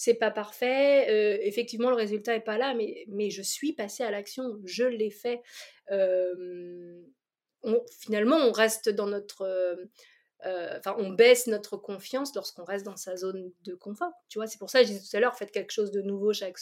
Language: French